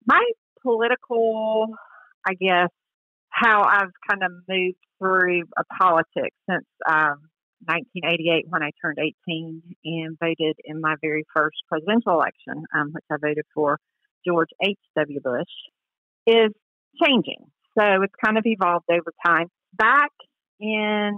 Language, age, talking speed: English, 50-69, 130 wpm